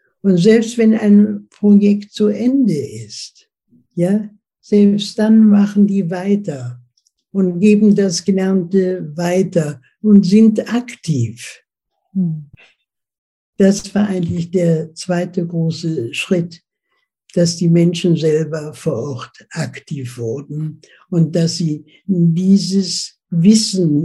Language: German